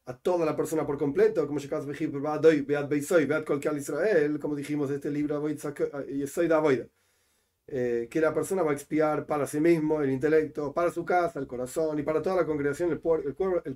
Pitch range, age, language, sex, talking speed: 145-200 Hz, 40-59, Spanish, male, 160 wpm